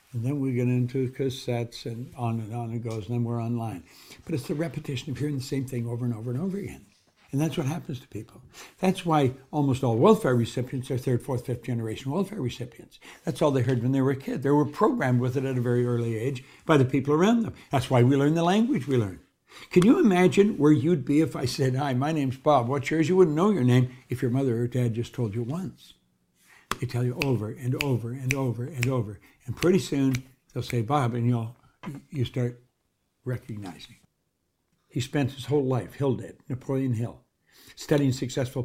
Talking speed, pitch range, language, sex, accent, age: 220 wpm, 120-150 Hz, English, male, American, 60-79